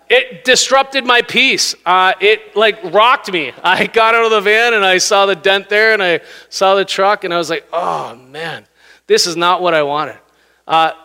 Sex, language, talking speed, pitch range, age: male, English, 210 wpm, 175-220 Hz, 30-49